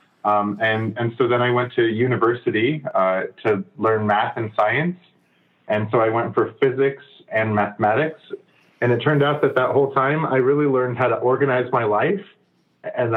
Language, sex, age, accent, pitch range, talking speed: English, male, 30-49, American, 110-140 Hz, 180 wpm